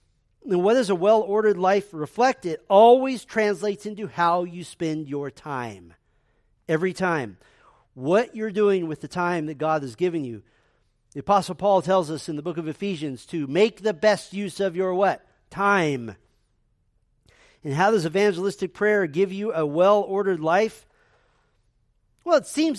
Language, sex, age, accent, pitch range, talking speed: English, male, 40-59, American, 160-215 Hz, 160 wpm